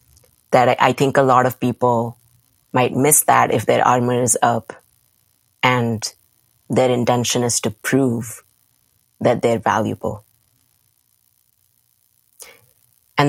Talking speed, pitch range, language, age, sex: 115 wpm, 115-130 Hz, English, 20-39, female